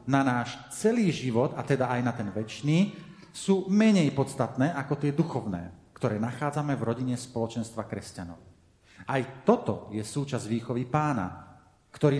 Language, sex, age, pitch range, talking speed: Slovak, male, 40-59, 120-155 Hz, 145 wpm